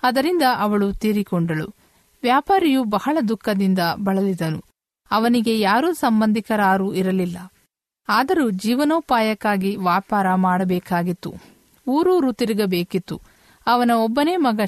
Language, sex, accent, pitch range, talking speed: Kannada, female, native, 190-245 Hz, 80 wpm